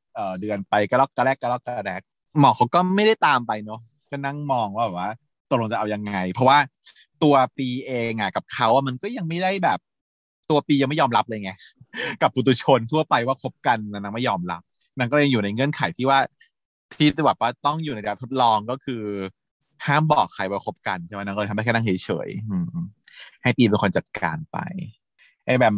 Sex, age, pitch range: male, 20-39, 110-160 Hz